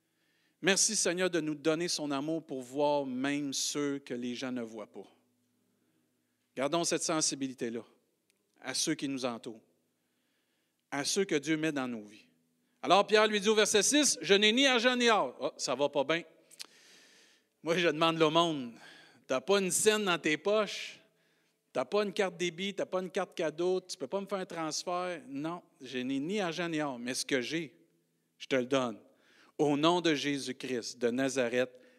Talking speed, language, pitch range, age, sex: 200 wpm, French, 145-235 Hz, 50-69, male